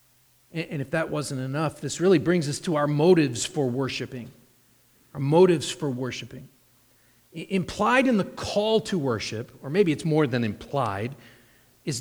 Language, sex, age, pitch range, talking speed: English, male, 40-59, 130-190 Hz, 160 wpm